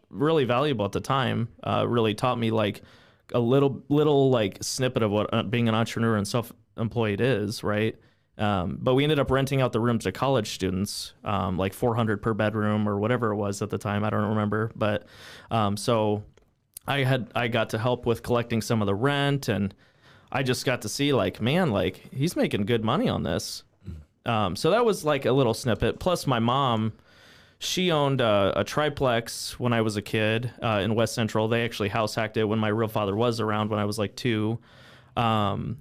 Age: 20-39